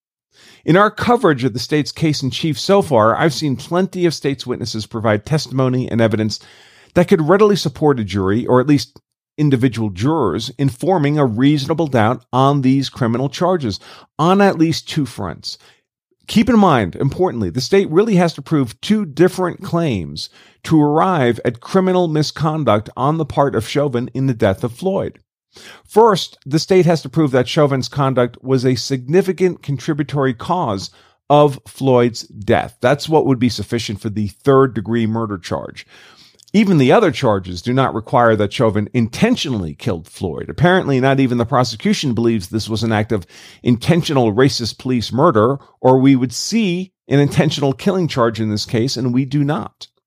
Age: 40-59